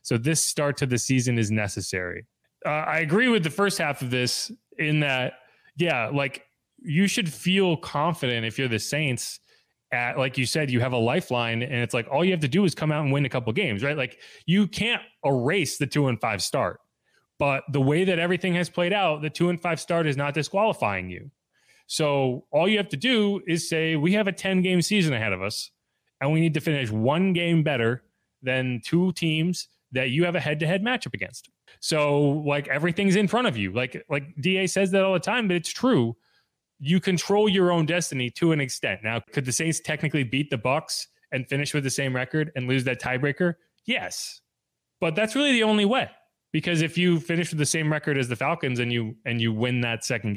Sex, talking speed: male, 220 wpm